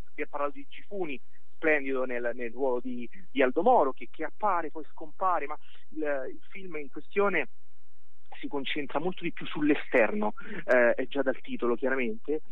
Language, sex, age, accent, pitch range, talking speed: Italian, male, 30-49, native, 125-170 Hz, 175 wpm